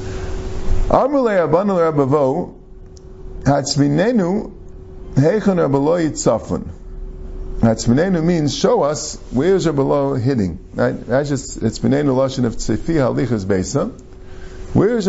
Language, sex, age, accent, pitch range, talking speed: English, male, 50-69, American, 95-140 Hz, 90 wpm